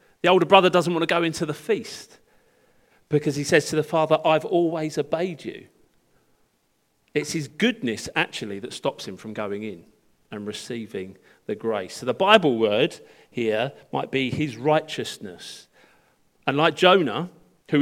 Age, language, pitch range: 40-59, English, 135-180 Hz